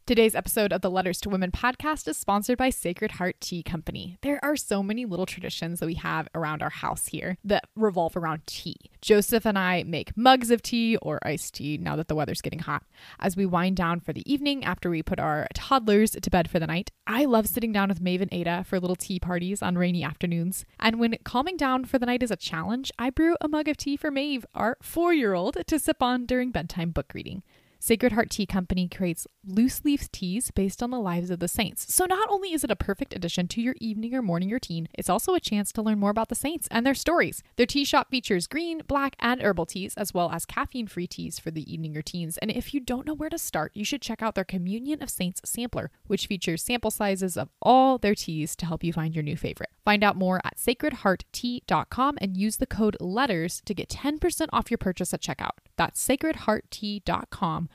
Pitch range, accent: 175-250 Hz, American